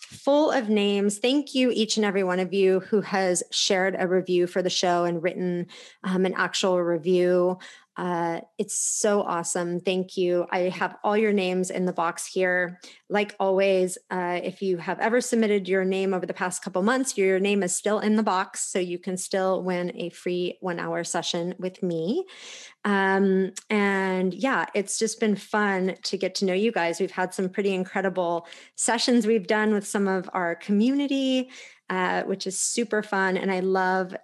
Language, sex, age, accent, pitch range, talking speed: English, female, 30-49, American, 185-220 Hz, 190 wpm